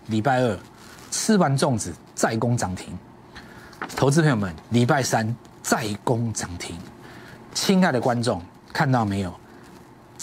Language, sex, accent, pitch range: Chinese, male, native, 100-140 Hz